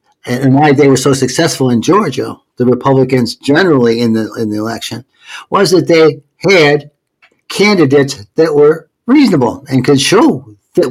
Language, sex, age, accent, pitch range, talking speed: English, male, 60-79, American, 125-155 Hz, 155 wpm